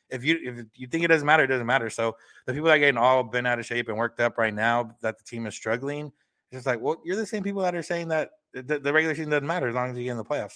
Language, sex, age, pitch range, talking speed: English, male, 30-49, 115-135 Hz, 330 wpm